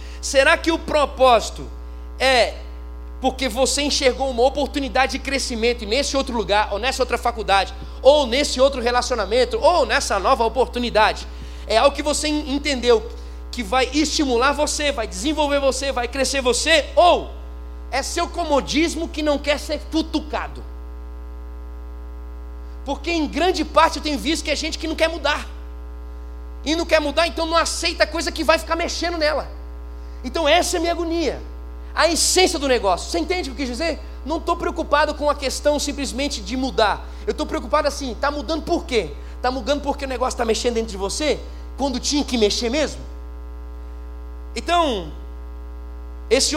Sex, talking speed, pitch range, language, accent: male, 165 wpm, 180-295 Hz, Portuguese, Brazilian